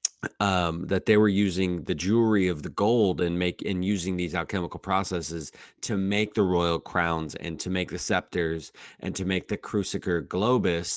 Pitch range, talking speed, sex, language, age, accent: 85-95 Hz, 180 wpm, male, English, 30-49, American